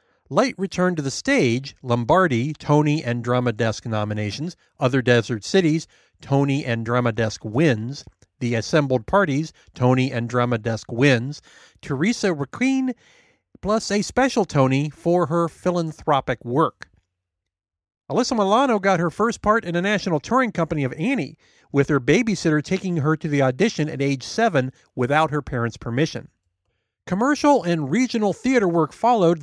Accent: American